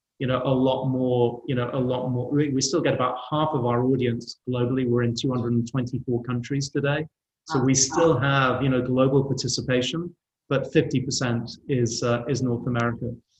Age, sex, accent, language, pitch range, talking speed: 30-49, male, British, English, 125-150 Hz, 175 wpm